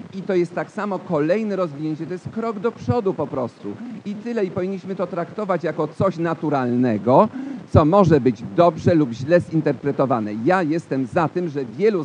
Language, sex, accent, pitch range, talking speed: Polish, male, native, 145-185 Hz, 180 wpm